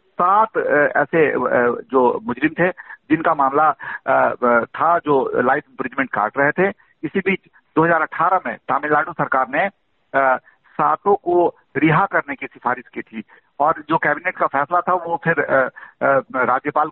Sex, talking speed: male, 135 wpm